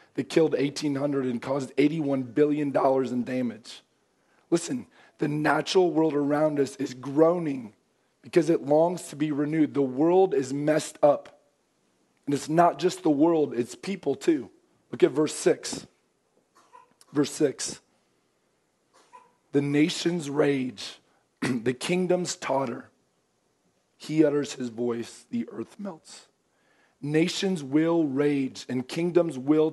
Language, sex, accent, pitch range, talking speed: English, male, American, 140-170 Hz, 125 wpm